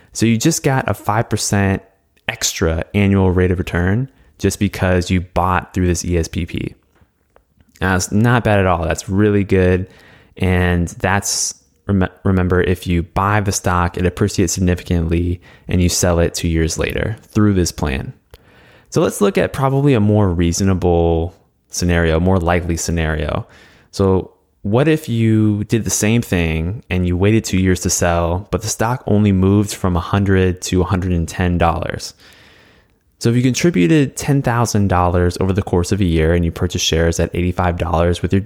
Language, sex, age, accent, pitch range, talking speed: English, male, 20-39, American, 85-100 Hz, 160 wpm